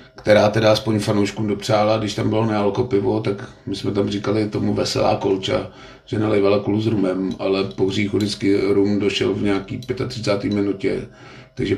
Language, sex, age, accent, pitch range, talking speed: Czech, male, 50-69, native, 100-125 Hz, 165 wpm